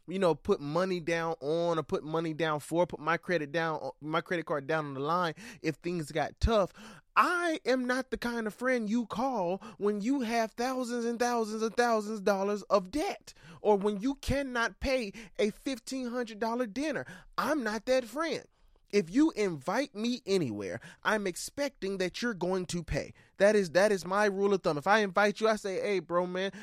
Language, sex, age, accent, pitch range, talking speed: English, male, 20-39, American, 170-225 Hz, 205 wpm